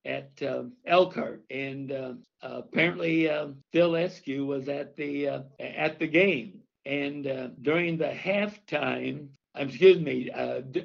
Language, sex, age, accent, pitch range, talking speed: English, male, 60-79, American, 135-165 Hz, 135 wpm